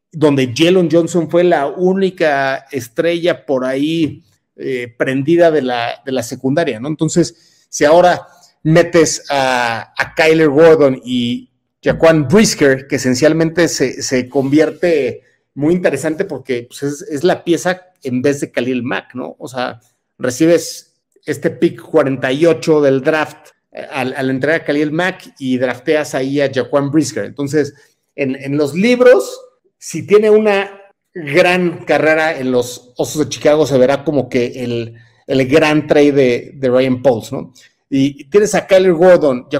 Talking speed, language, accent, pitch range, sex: 155 wpm, Spanish, Mexican, 135-170 Hz, male